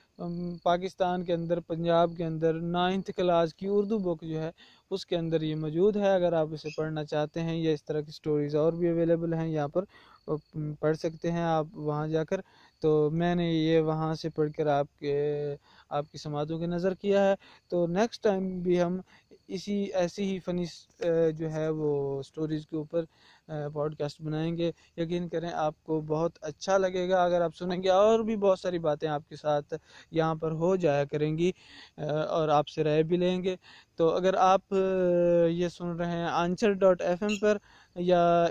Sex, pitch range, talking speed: male, 160-180 Hz, 190 wpm